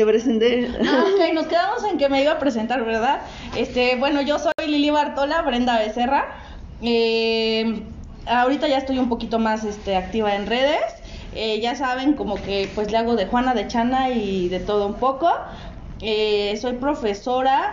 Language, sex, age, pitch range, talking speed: Spanish, female, 20-39, 215-275 Hz, 170 wpm